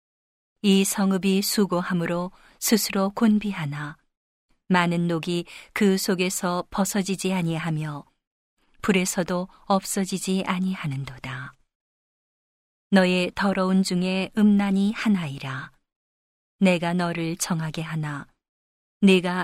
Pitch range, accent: 160-195 Hz, native